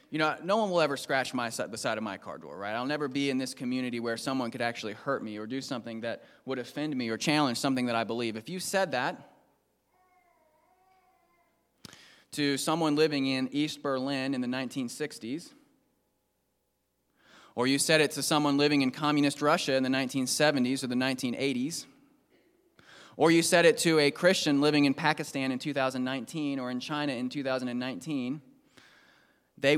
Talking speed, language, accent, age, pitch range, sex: 175 wpm, English, American, 20-39, 125-150 Hz, male